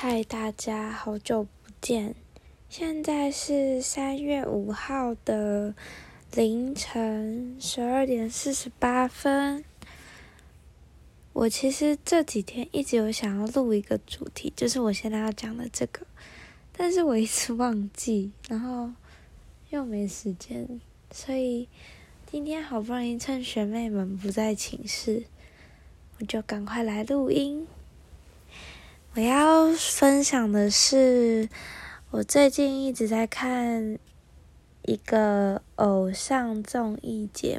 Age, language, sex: 20-39, Chinese, female